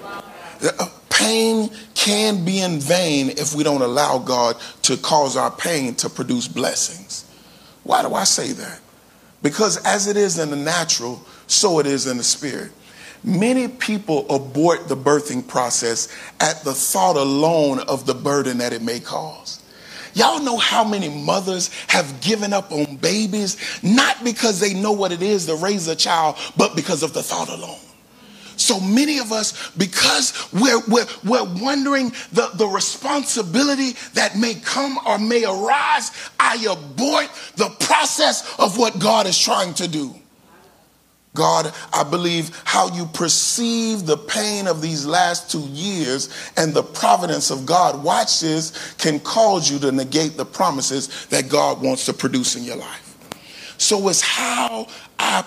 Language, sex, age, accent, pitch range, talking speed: English, male, 40-59, American, 150-225 Hz, 155 wpm